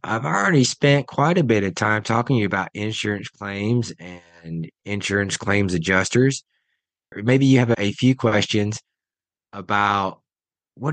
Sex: male